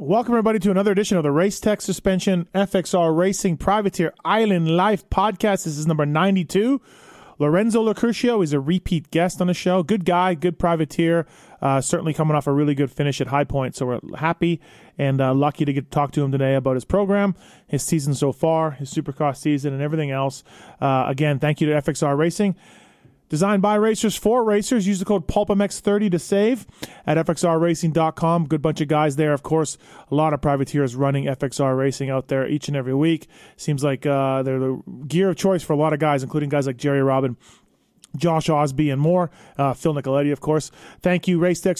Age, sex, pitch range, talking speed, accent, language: 30-49, male, 145-180 Hz, 200 wpm, American, English